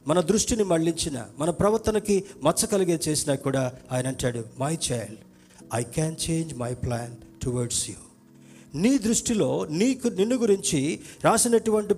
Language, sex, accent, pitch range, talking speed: Telugu, male, native, 130-190 Hz, 125 wpm